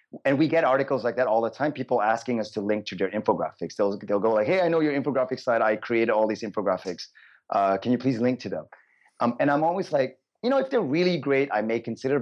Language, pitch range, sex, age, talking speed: English, 105-130 Hz, male, 30-49, 260 wpm